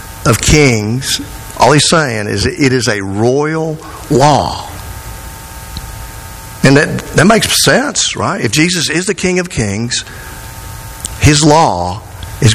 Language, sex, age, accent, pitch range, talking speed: English, male, 50-69, American, 115-145 Hz, 135 wpm